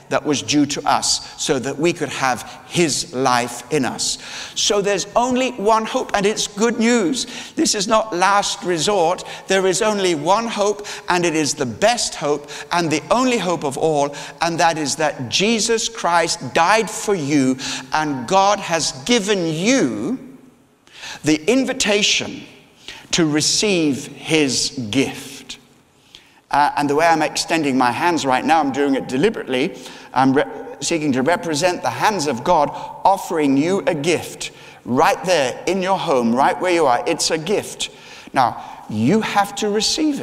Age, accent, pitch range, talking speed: 60-79, British, 150-215 Hz, 160 wpm